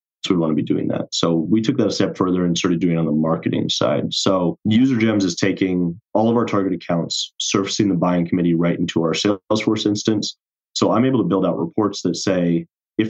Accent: American